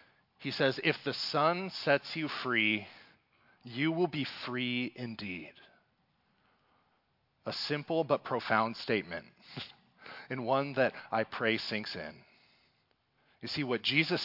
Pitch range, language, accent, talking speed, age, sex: 125-160 Hz, English, American, 120 wpm, 30-49, male